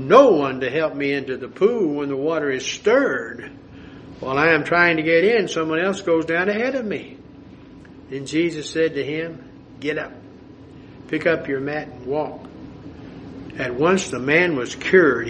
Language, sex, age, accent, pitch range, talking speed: English, male, 60-79, American, 135-155 Hz, 180 wpm